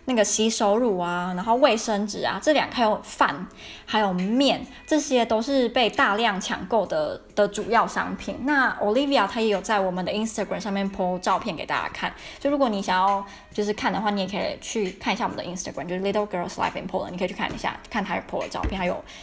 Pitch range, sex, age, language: 195-255 Hz, female, 20-39, Chinese